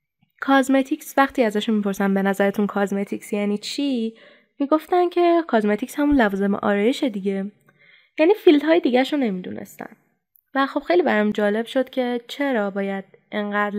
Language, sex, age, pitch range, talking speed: Persian, female, 20-39, 205-285 Hz, 145 wpm